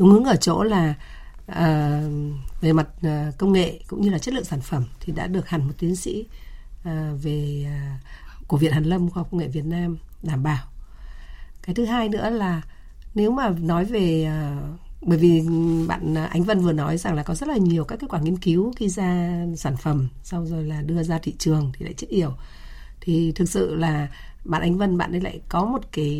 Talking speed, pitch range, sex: 220 wpm, 150-185 Hz, female